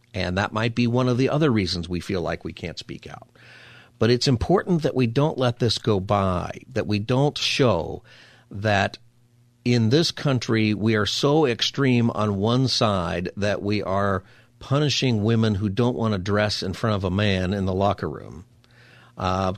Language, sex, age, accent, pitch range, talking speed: English, male, 50-69, American, 105-125 Hz, 185 wpm